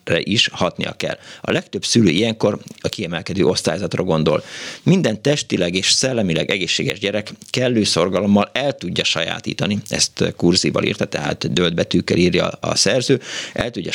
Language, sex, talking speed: Hungarian, male, 140 wpm